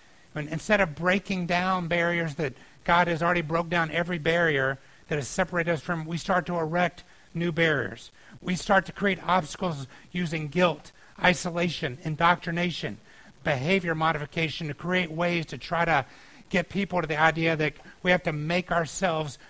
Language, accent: English, American